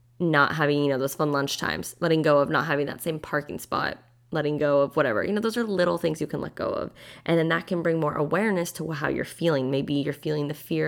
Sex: female